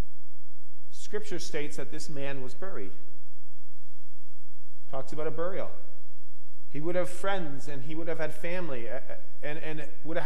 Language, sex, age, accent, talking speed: English, male, 40-59, American, 145 wpm